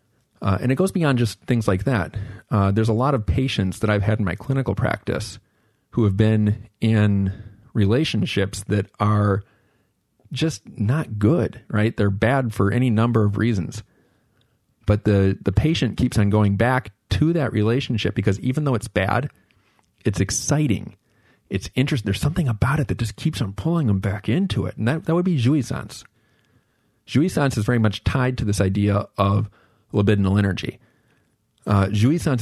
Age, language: 40-59, English